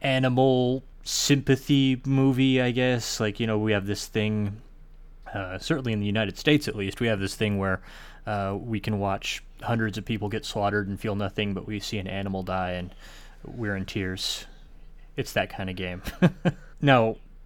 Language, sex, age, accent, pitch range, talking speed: English, male, 20-39, American, 100-120 Hz, 180 wpm